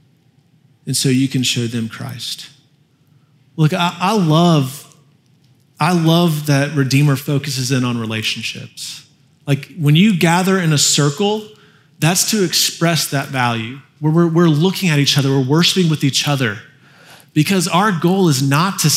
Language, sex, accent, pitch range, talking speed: English, male, American, 135-160 Hz, 155 wpm